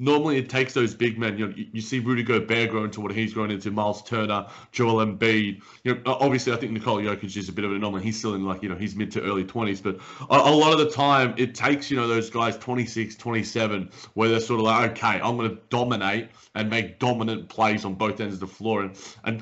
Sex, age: male, 30-49